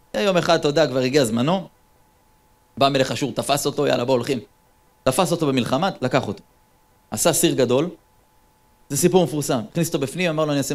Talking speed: 180 wpm